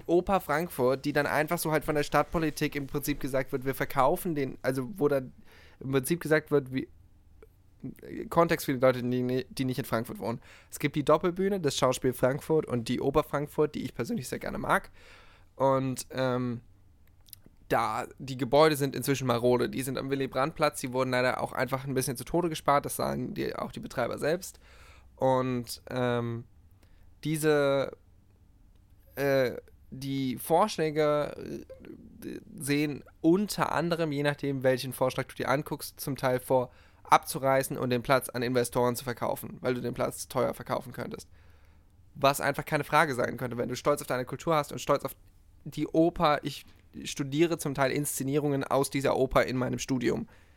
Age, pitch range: 10-29, 120-145 Hz